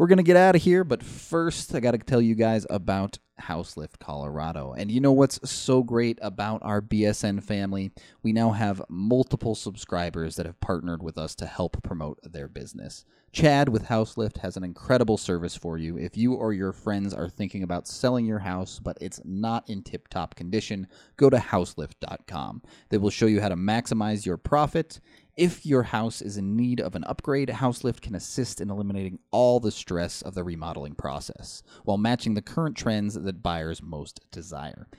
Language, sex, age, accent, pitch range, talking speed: English, male, 30-49, American, 90-120 Hz, 190 wpm